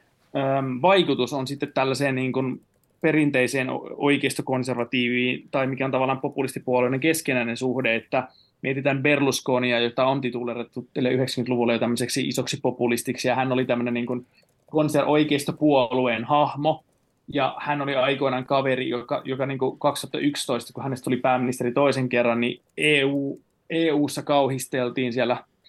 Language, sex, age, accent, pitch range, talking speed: Finnish, male, 20-39, native, 125-140 Hz, 105 wpm